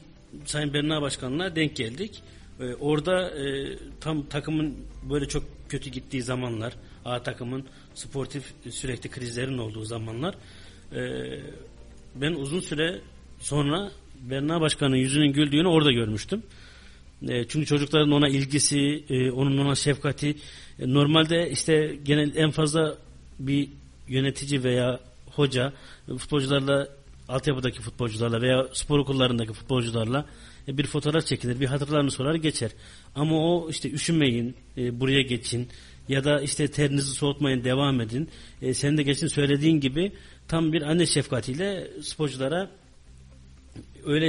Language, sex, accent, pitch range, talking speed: Turkish, male, native, 125-150 Hz, 125 wpm